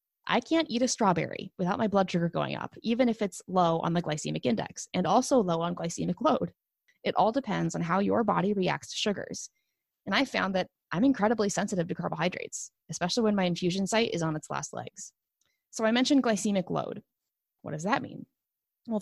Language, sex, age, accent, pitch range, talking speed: English, female, 20-39, American, 175-230 Hz, 200 wpm